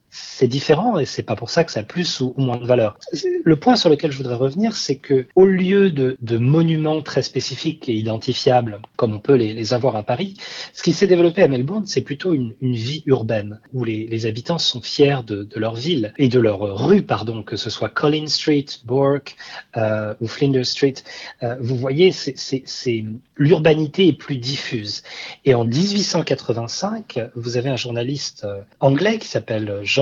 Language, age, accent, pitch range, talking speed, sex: French, 40-59, French, 115-155 Hz, 190 wpm, male